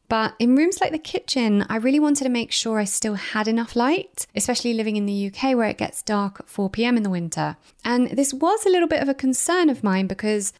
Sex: female